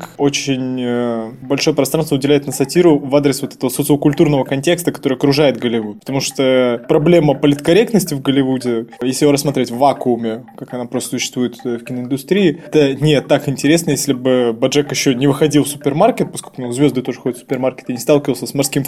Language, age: Russian, 20-39